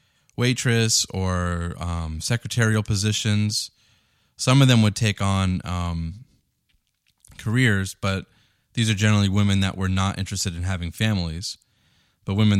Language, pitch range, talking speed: English, 90-105 Hz, 130 wpm